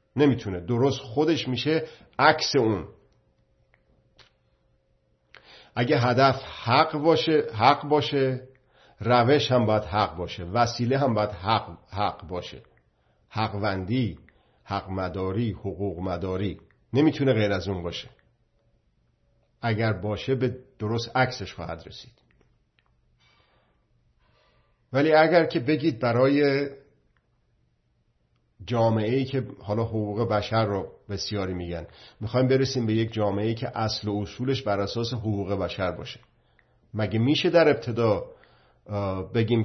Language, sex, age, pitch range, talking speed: Persian, male, 50-69, 100-125 Hz, 105 wpm